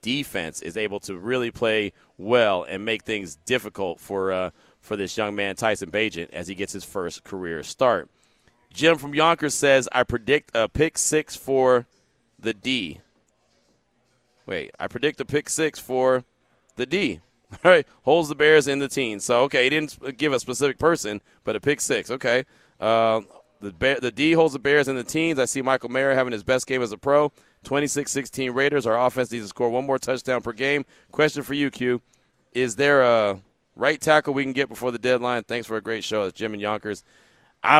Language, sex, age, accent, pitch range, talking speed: English, male, 30-49, American, 110-140 Hz, 200 wpm